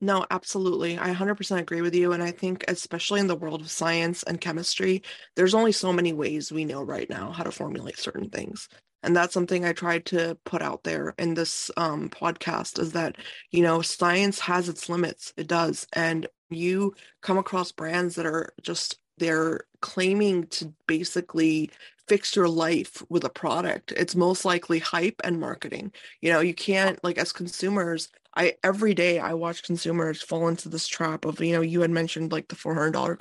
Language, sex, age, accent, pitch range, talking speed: English, female, 20-39, American, 170-200 Hz, 190 wpm